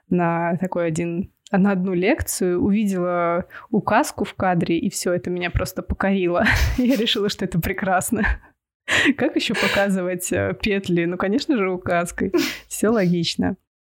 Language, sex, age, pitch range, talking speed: Russian, female, 20-39, 175-205 Hz, 135 wpm